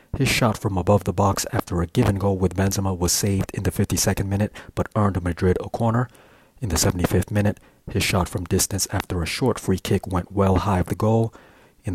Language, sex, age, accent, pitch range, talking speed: English, male, 40-59, American, 90-105 Hz, 215 wpm